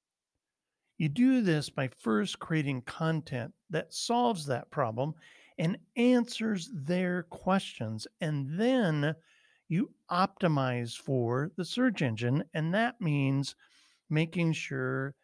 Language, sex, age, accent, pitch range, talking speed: English, male, 50-69, American, 130-170 Hz, 110 wpm